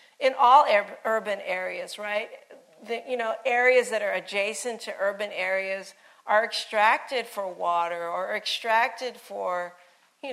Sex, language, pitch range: female, English, 190-250 Hz